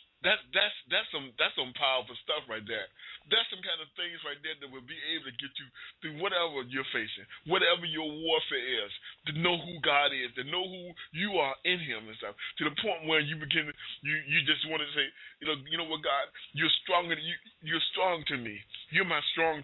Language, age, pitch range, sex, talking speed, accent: English, 20-39, 135-165 Hz, male, 225 wpm, American